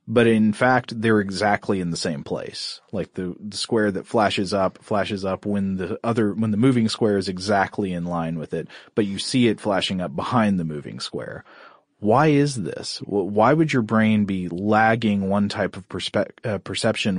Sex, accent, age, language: male, American, 30-49, English